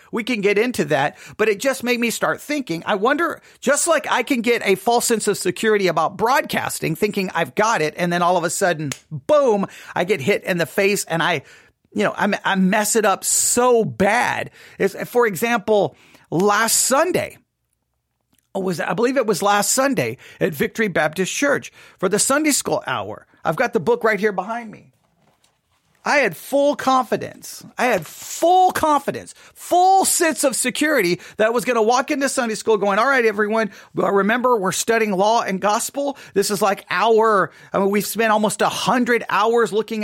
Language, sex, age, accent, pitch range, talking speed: English, male, 40-59, American, 200-255 Hz, 190 wpm